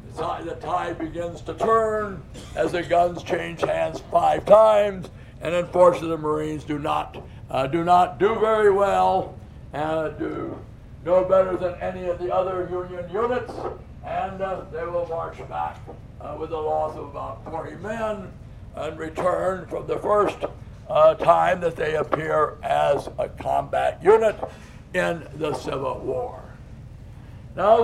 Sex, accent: male, American